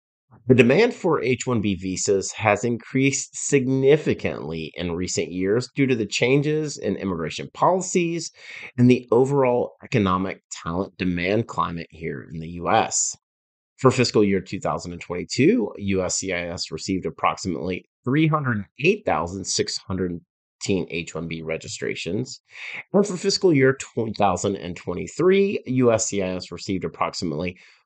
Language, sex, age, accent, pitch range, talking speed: English, male, 30-49, American, 90-130 Hz, 100 wpm